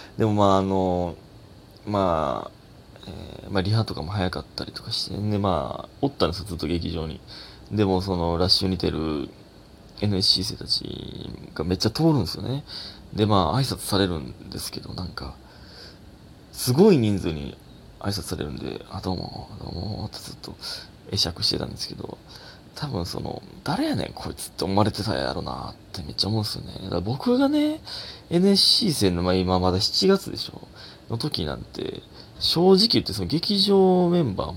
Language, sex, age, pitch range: Japanese, male, 20-39, 95-145 Hz